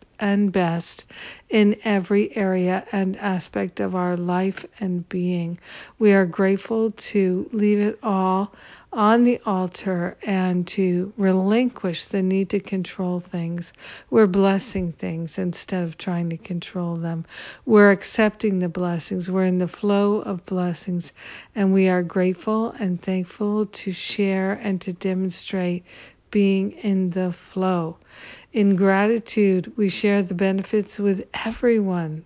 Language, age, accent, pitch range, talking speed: English, 50-69, American, 180-210 Hz, 135 wpm